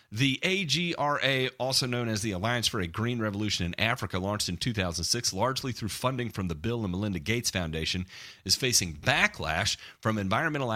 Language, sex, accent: English, male, American